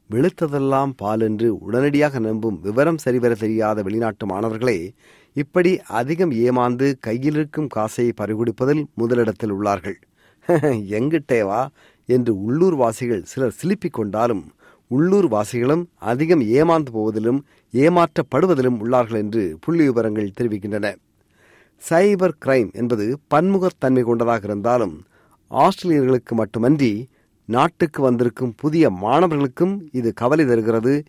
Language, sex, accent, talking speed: Tamil, male, native, 95 wpm